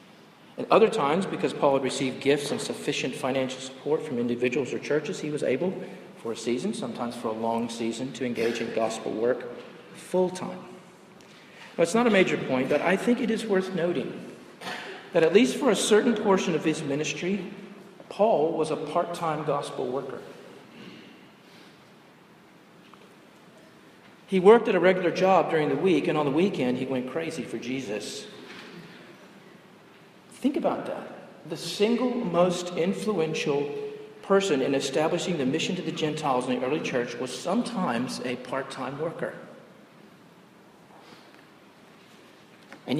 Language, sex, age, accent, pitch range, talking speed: English, male, 40-59, American, 130-190 Hz, 145 wpm